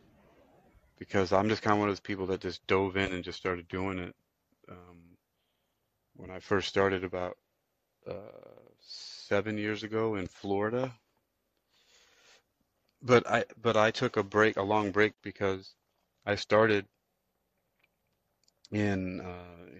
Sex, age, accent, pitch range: male, 30-49, American, 90-105 Hz